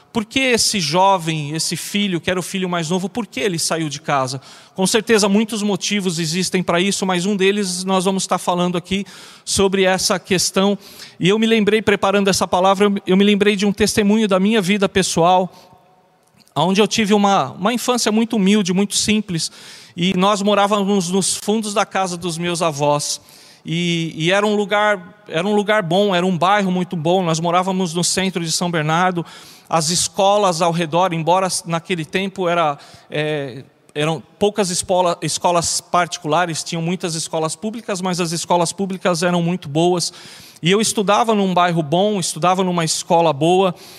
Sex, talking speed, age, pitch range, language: male, 170 wpm, 40-59, 170-205 Hz, Portuguese